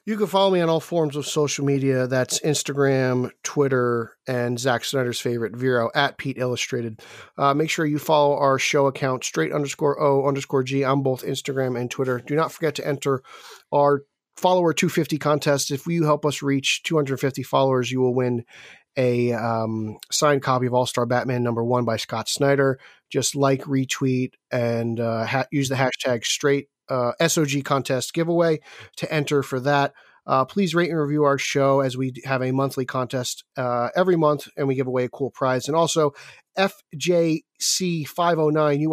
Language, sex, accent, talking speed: English, male, American, 175 wpm